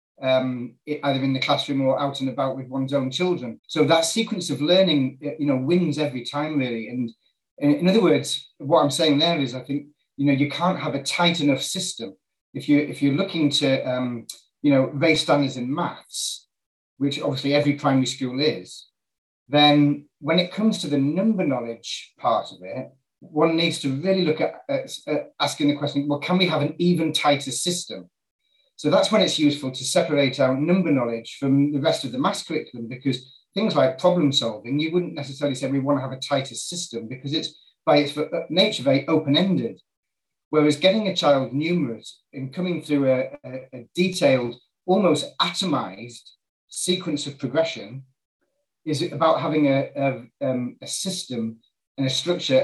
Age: 30-49